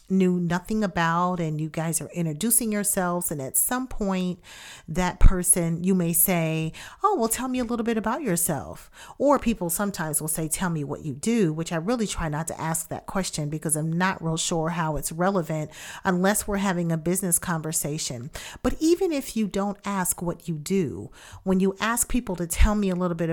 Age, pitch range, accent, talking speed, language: 40-59, 165-220 Hz, American, 205 wpm, English